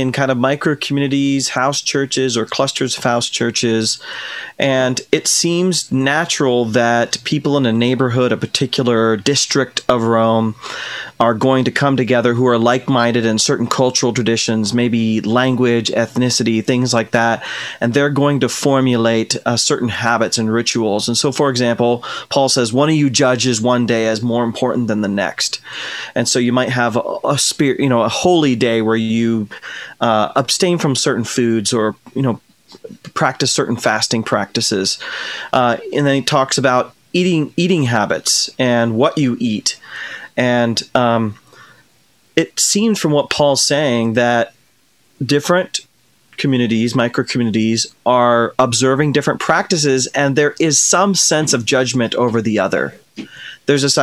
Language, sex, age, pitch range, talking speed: English, male, 30-49, 115-140 Hz, 155 wpm